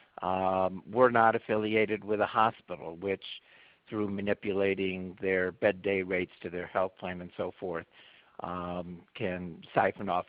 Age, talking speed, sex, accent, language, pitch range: 50-69, 145 wpm, male, American, English, 95-115 Hz